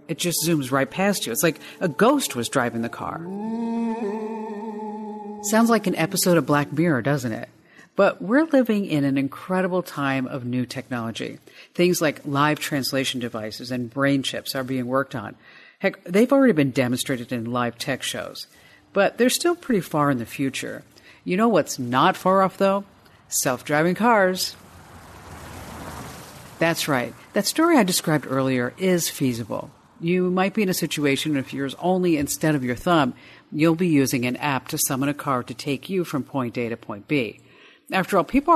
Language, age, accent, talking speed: English, 50-69, American, 180 wpm